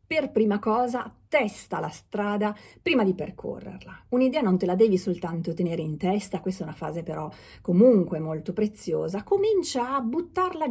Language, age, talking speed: Italian, 40-59, 165 wpm